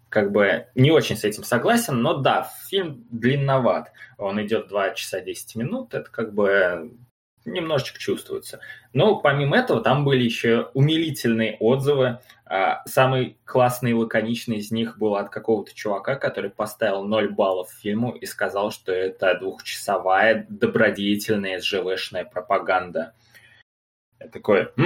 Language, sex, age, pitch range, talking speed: Russian, male, 20-39, 110-155 Hz, 135 wpm